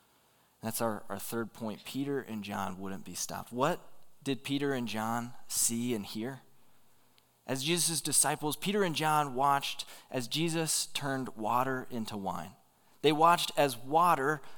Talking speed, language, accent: 150 wpm, English, American